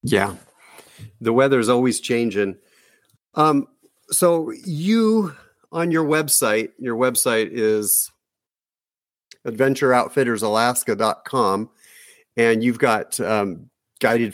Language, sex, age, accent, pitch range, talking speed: English, male, 50-69, American, 110-135 Hz, 90 wpm